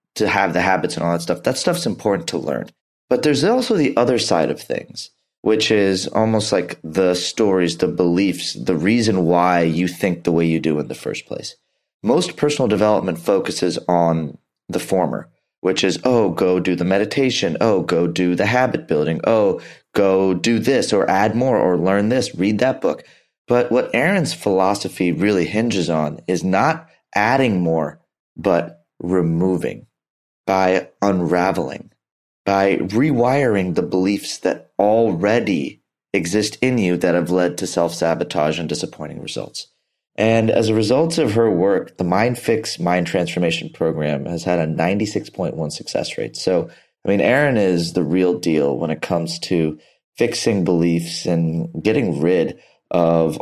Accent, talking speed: American, 165 wpm